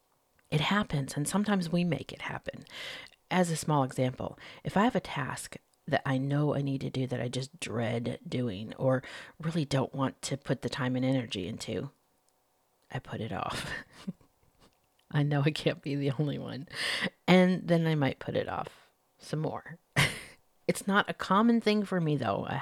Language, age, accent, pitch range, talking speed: English, 40-59, American, 130-165 Hz, 185 wpm